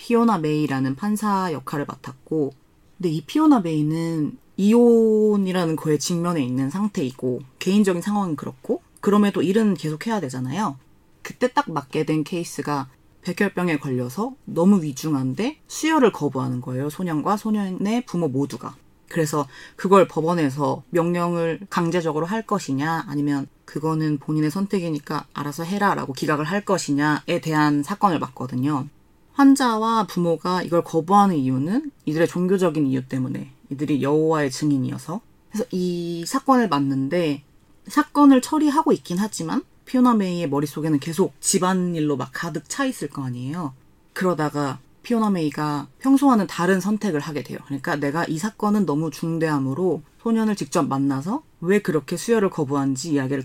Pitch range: 145-200 Hz